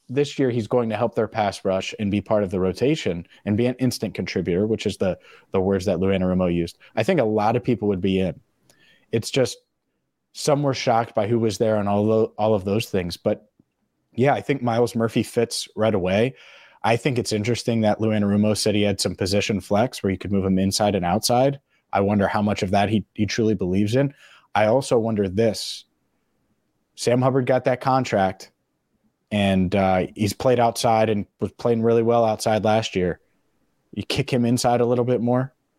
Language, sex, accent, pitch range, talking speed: English, male, American, 100-120 Hz, 210 wpm